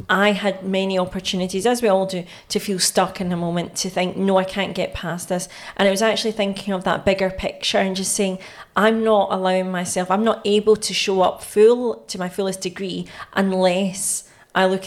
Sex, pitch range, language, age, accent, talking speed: female, 185-215 Hz, English, 30-49, British, 210 wpm